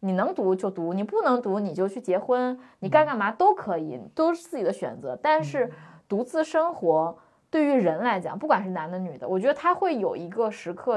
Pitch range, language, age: 185-275 Hz, Chinese, 20-39